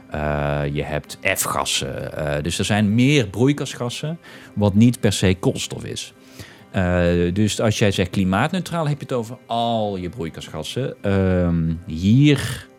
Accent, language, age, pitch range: Dutch, Dutch, 30-49, 80-110 Hz